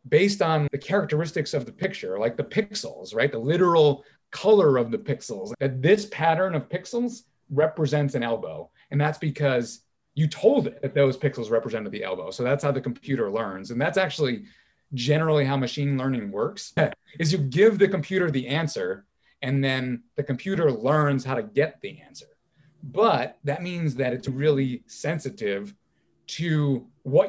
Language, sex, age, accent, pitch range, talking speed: English, male, 30-49, American, 130-160 Hz, 170 wpm